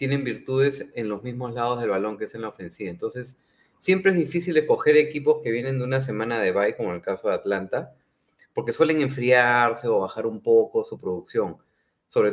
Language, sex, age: Spanish, male, 30-49